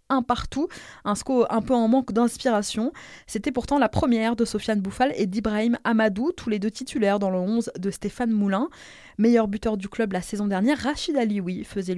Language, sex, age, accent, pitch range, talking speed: French, female, 20-39, French, 195-250 Hz, 195 wpm